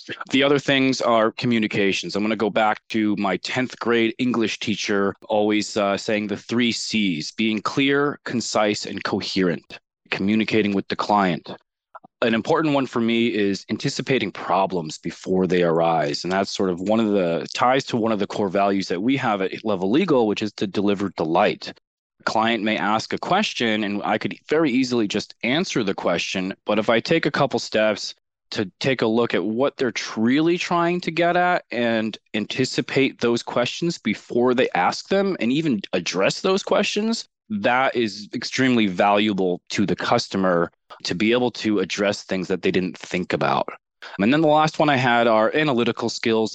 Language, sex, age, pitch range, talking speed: English, male, 20-39, 105-130 Hz, 180 wpm